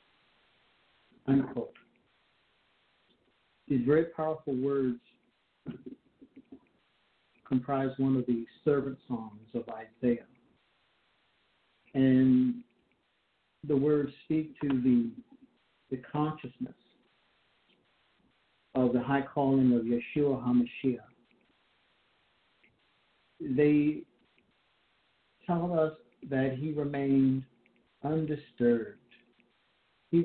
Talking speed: 70 wpm